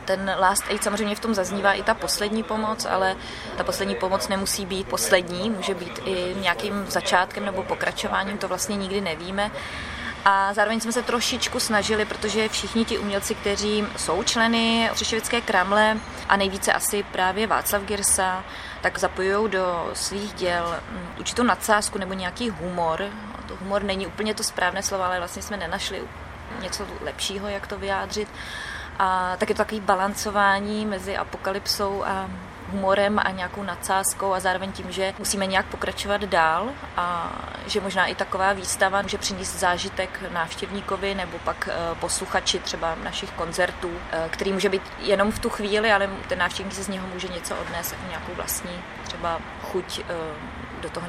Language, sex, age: Czech, female, 20-39